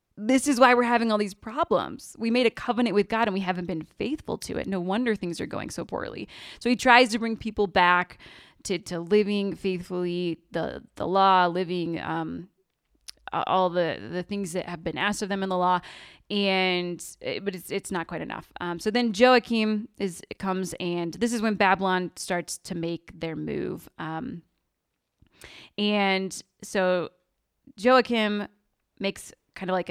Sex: female